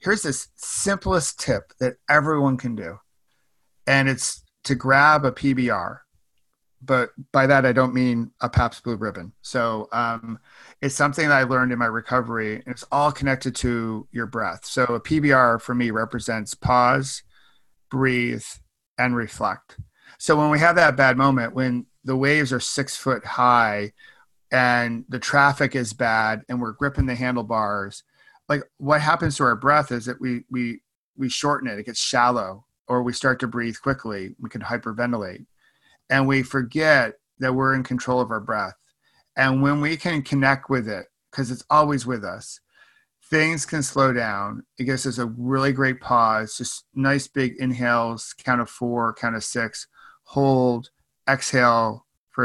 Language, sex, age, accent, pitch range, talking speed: English, male, 40-59, American, 115-135 Hz, 165 wpm